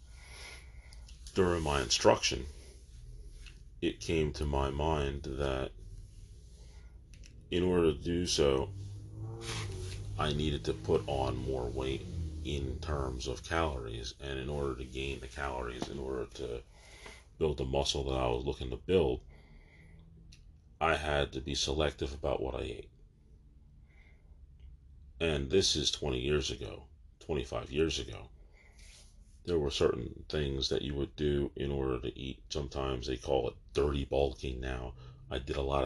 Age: 40-59